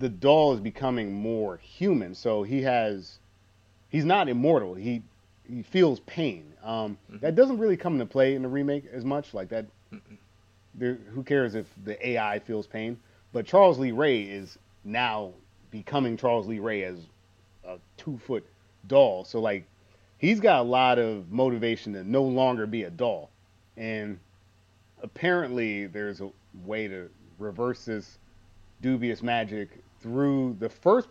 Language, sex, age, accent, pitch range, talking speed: English, male, 30-49, American, 100-130 Hz, 155 wpm